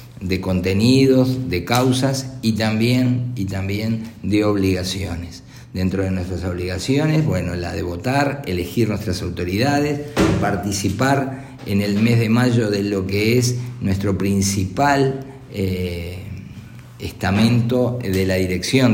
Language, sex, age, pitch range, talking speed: Spanish, male, 50-69, 100-125 Hz, 120 wpm